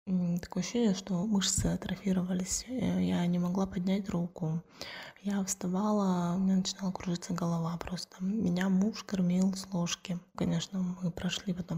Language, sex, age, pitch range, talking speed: Russian, female, 20-39, 170-195 Hz, 140 wpm